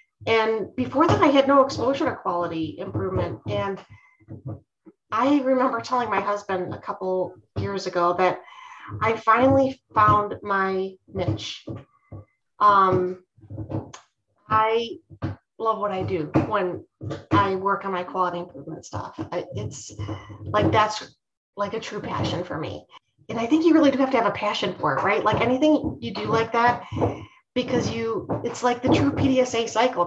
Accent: American